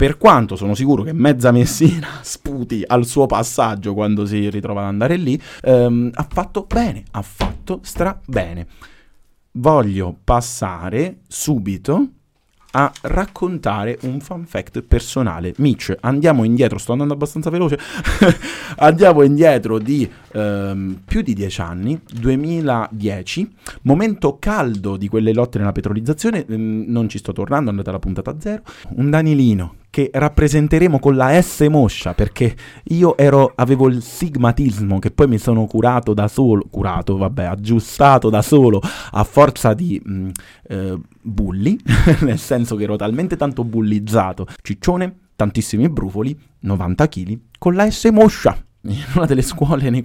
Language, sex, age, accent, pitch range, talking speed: Italian, male, 30-49, native, 105-145 Hz, 140 wpm